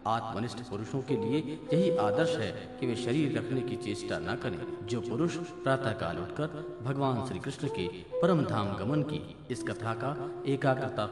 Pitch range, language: 115-170 Hz, Hindi